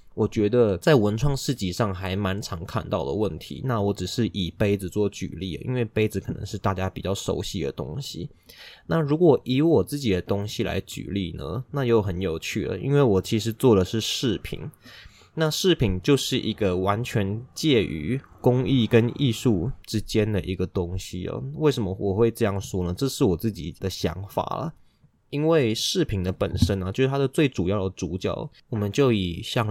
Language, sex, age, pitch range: Chinese, male, 20-39, 95-120 Hz